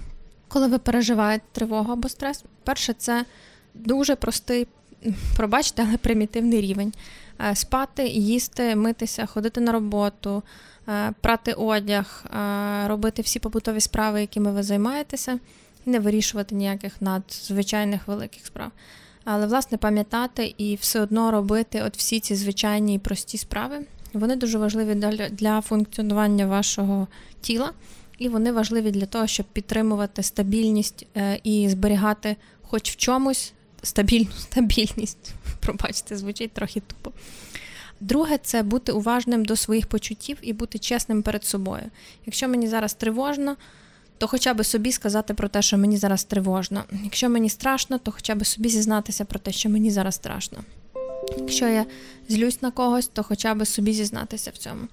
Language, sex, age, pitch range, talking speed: Ukrainian, female, 20-39, 205-235 Hz, 140 wpm